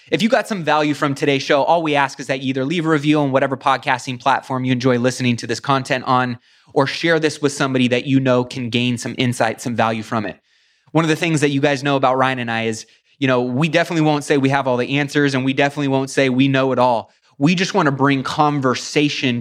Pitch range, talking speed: 130-150 Hz, 255 wpm